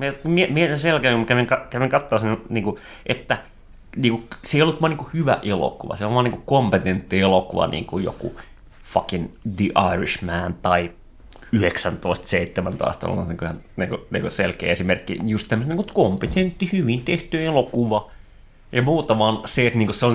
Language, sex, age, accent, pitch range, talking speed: Finnish, male, 30-49, native, 95-120 Hz, 150 wpm